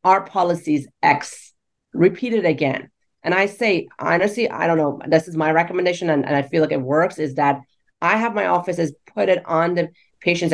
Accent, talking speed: American, 200 wpm